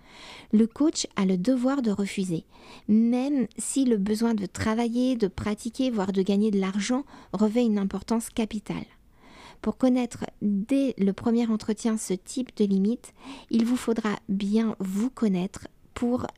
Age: 50-69